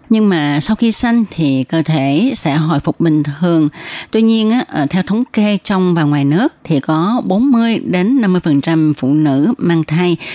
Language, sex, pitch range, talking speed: Vietnamese, female, 150-205 Hz, 185 wpm